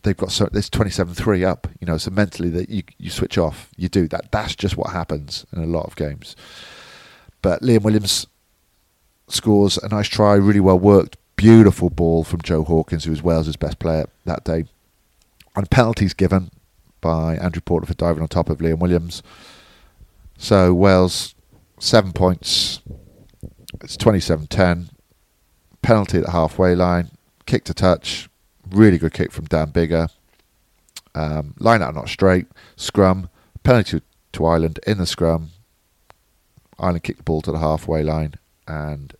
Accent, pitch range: British, 80-100 Hz